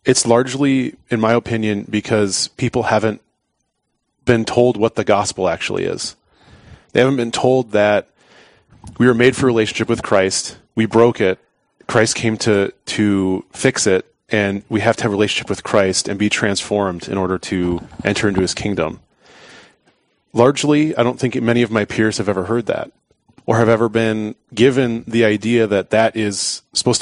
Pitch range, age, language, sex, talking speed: 105-120 Hz, 30-49, English, male, 175 wpm